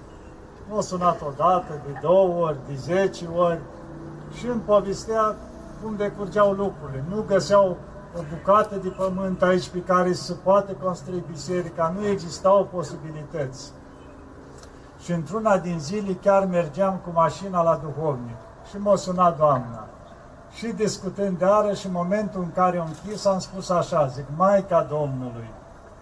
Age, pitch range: 40-59, 155-195 Hz